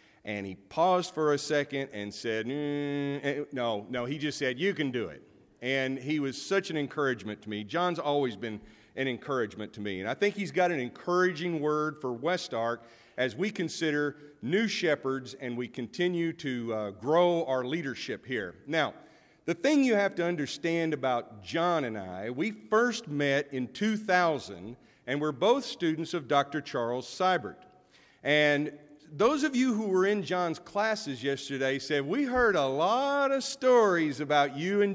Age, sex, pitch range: 50-69, male, 130-180 Hz